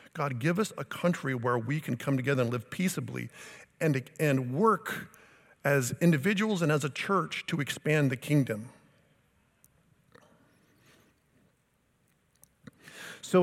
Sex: male